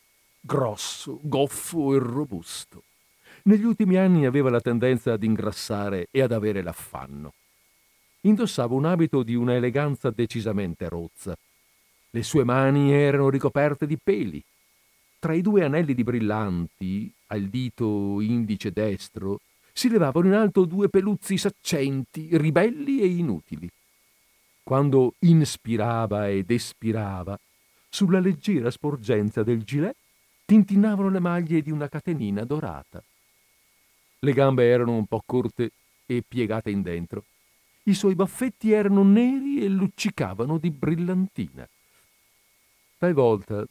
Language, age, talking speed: Italian, 50-69, 120 wpm